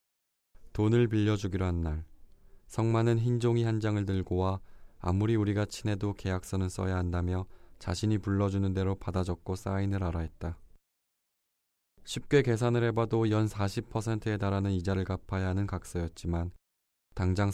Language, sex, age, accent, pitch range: Korean, male, 20-39, native, 85-105 Hz